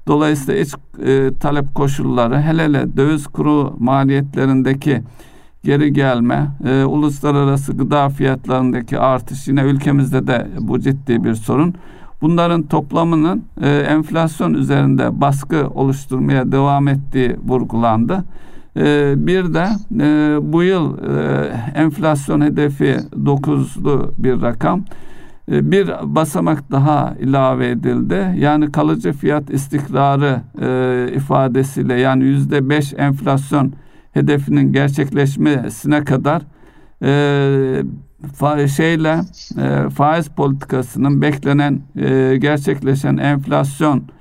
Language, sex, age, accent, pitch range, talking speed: Turkish, male, 50-69, native, 130-150 Hz, 90 wpm